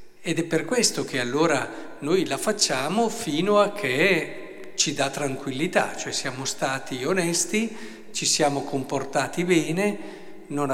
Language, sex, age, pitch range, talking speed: Italian, male, 50-69, 140-185 Hz, 135 wpm